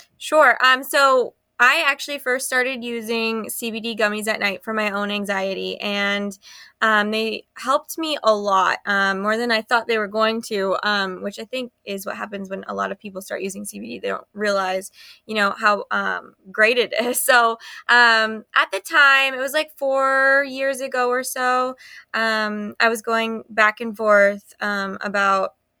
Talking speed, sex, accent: 185 wpm, female, American